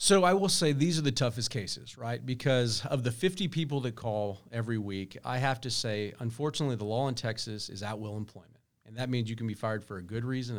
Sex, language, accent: male, English, American